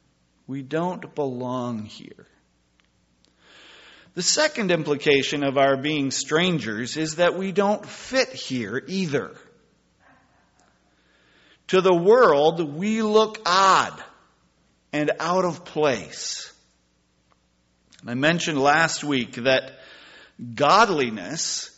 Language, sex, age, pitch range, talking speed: English, male, 50-69, 110-165 Hz, 95 wpm